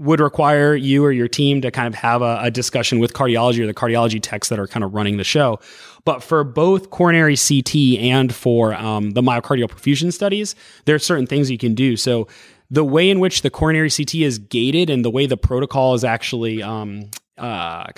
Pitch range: 120-155 Hz